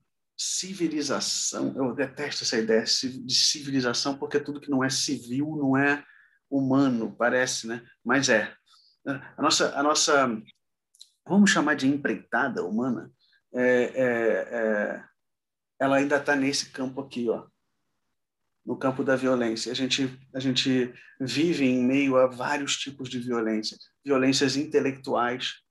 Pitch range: 120-140 Hz